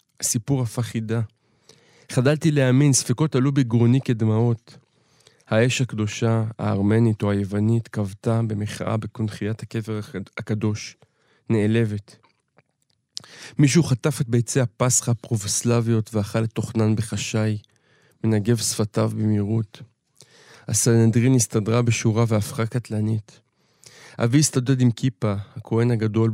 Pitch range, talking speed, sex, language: 110-125 Hz, 100 wpm, male, Hebrew